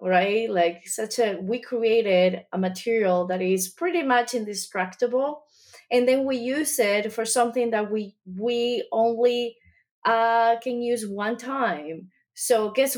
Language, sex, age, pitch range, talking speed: English, female, 20-39, 185-230 Hz, 145 wpm